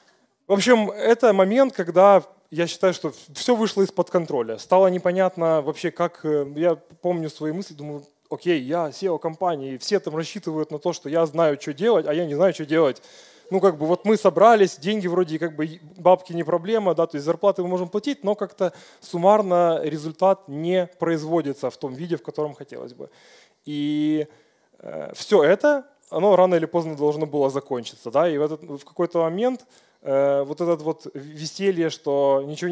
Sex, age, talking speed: male, 20-39, 180 wpm